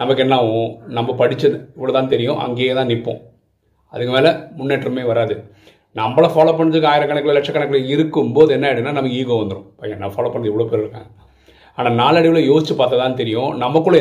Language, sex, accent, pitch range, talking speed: Tamil, male, native, 110-150 Hz, 170 wpm